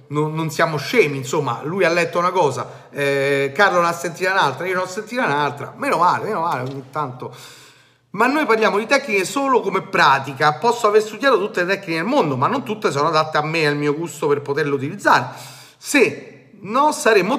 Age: 30-49